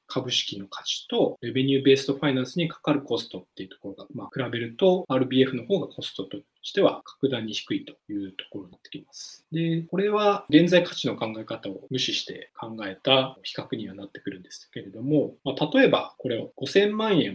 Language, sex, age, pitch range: Japanese, male, 20-39, 115-180 Hz